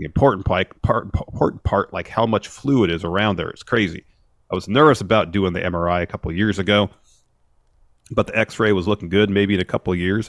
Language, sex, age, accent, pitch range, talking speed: English, male, 40-59, American, 90-115 Hz, 205 wpm